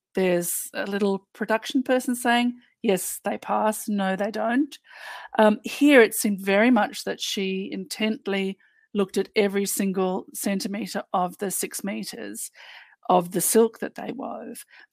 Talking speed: 145 wpm